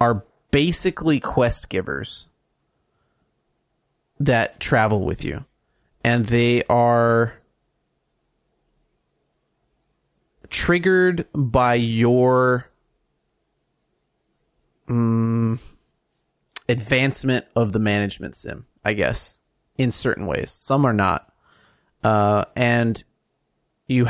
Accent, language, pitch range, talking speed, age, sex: American, English, 110-130 Hz, 75 wpm, 30-49, male